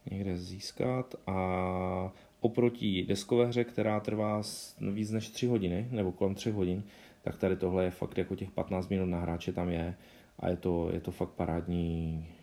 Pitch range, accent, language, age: 90-105 Hz, native, Czech, 20-39